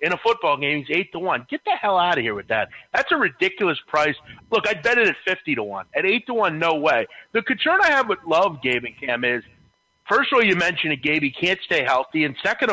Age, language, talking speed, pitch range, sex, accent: 30-49, English, 260 wpm, 135-180 Hz, male, American